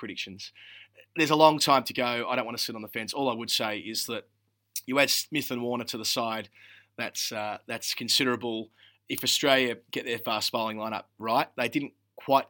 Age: 30-49